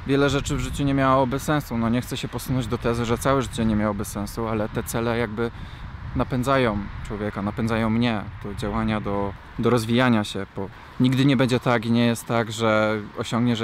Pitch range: 110-130 Hz